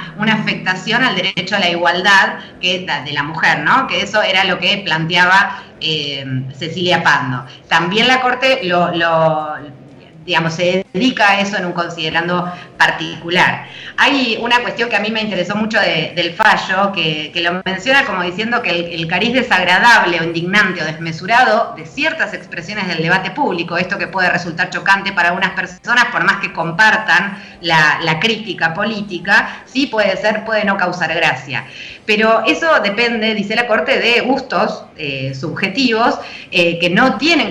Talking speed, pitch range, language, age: 165 wpm, 165-210 Hz, Spanish, 20-39